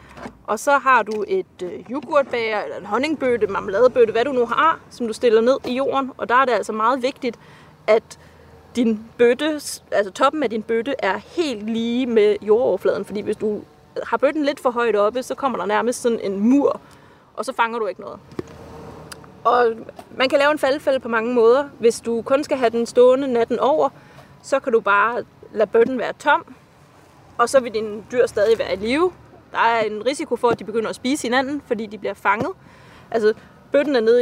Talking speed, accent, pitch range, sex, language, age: 205 wpm, native, 220-275 Hz, female, Danish, 30-49